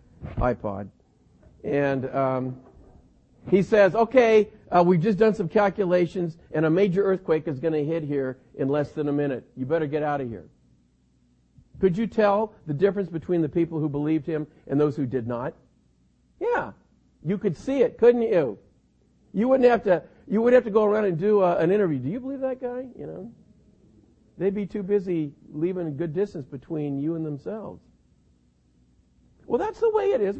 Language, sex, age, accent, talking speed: English, male, 50-69, American, 185 wpm